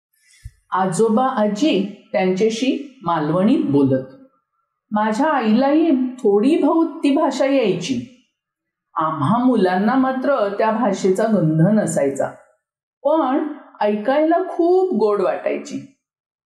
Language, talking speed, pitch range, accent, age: Marathi, 90 wpm, 185-270 Hz, native, 50-69